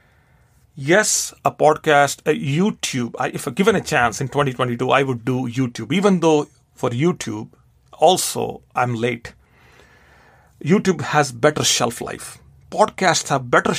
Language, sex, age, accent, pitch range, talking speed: English, male, 40-59, Indian, 125-160 Hz, 130 wpm